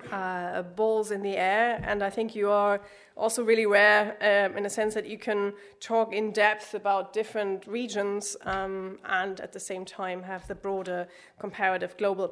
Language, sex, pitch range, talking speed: English, female, 190-215 Hz, 180 wpm